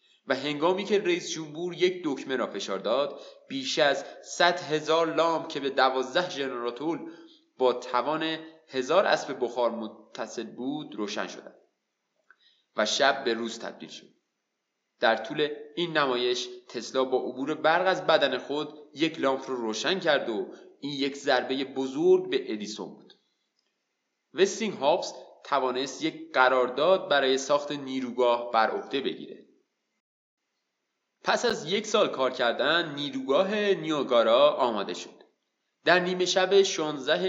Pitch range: 130-185 Hz